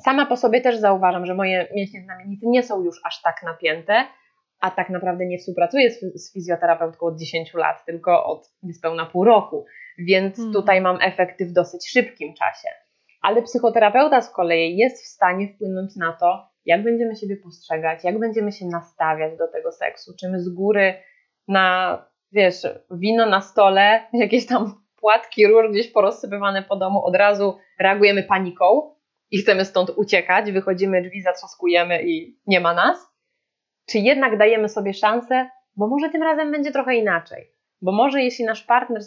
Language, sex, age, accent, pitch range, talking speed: Polish, female, 20-39, native, 185-235 Hz, 165 wpm